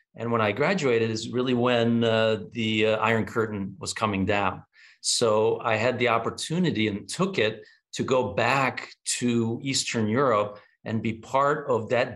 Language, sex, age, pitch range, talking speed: English, male, 50-69, 110-125 Hz, 170 wpm